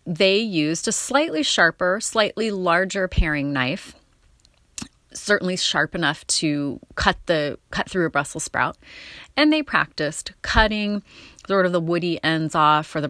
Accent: American